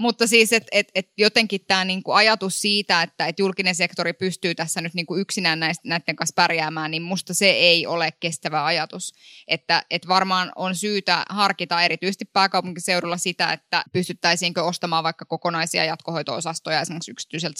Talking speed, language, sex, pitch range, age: 160 wpm, Finnish, female, 160-185 Hz, 10-29